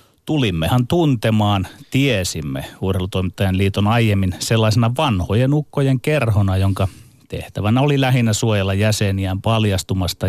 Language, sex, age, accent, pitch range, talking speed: Finnish, male, 30-49, native, 95-125 Hz, 100 wpm